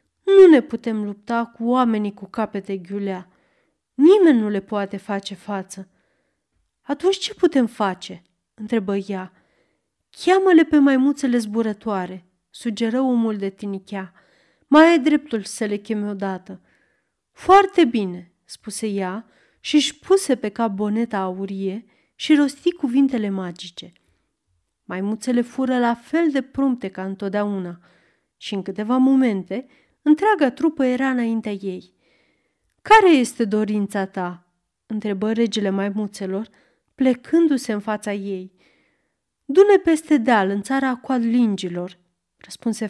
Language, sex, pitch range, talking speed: Romanian, female, 195-265 Hz, 120 wpm